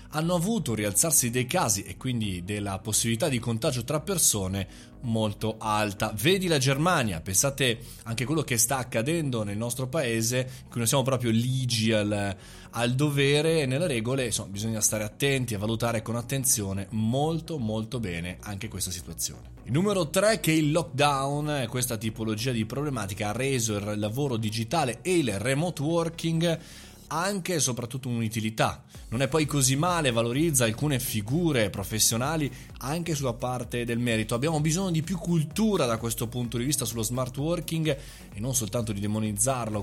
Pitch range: 110-155 Hz